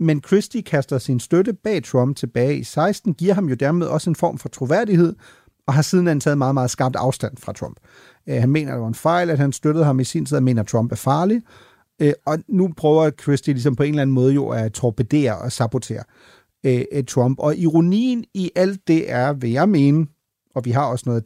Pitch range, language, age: 125-170 Hz, Danish, 40-59